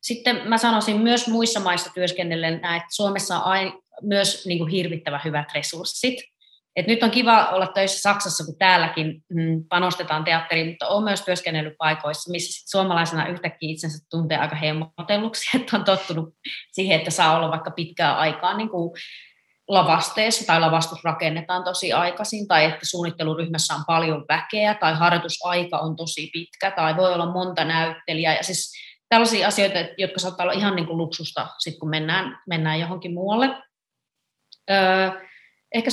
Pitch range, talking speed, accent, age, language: 165-195 Hz, 140 wpm, native, 30-49, Finnish